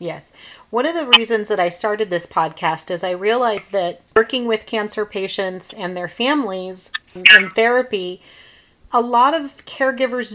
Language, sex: English, female